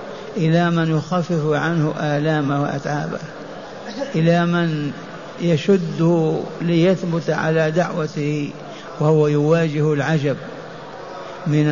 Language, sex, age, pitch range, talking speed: Arabic, male, 60-79, 155-175 Hz, 80 wpm